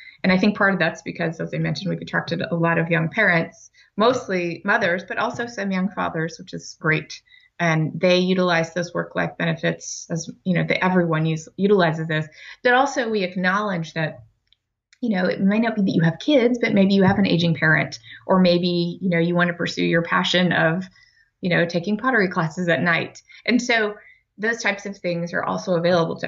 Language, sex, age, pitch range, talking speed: English, female, 20-39, 165-200 Hz, 205 wpm